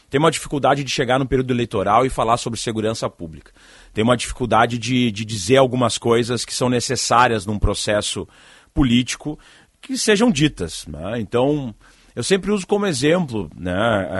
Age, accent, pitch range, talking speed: 30-49, Brazilian, 105-145 Hz, 160 wpm